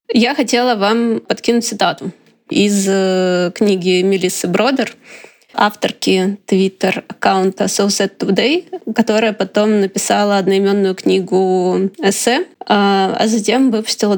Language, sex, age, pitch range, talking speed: Russian, female, 20-39, 200-230 Hz, 95 wpm